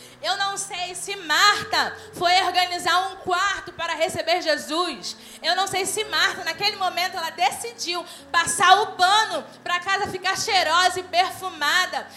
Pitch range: 330-405 Hz